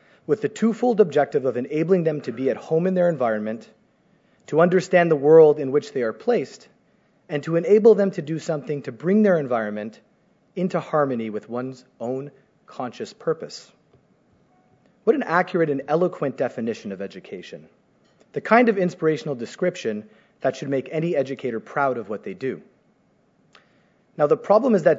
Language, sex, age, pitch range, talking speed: English, male, 30-49, 130-185 Hz, 165 wpm